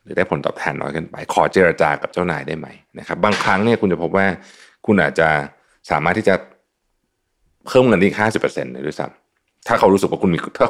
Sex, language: male, Thai